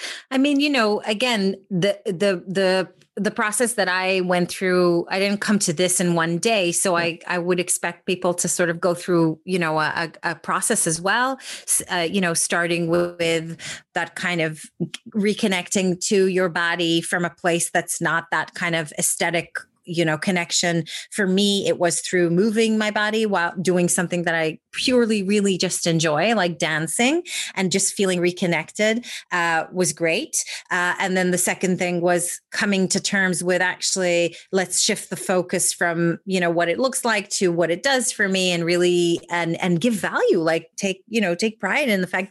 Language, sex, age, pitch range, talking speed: English, female, 30-49, 170-210 Hz, 190 wpm